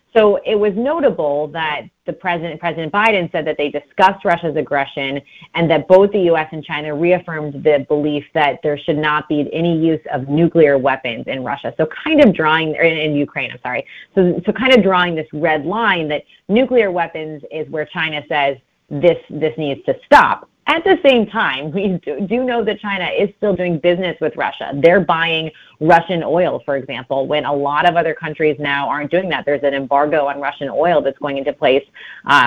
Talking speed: 200 wpm